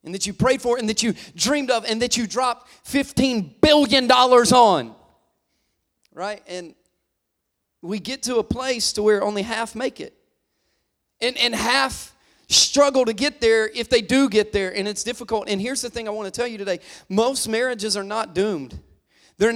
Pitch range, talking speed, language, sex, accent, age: 215-280 Hz, 190 wpm, English, male, American, 30-49